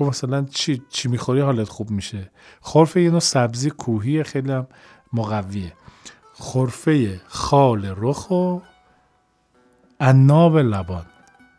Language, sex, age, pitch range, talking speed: Persian, male, 40-59, 100-140 Hz, 100 wpm